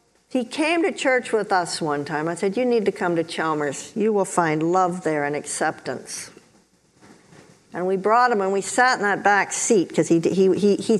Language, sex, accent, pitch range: English, female, American, 175-230 Hz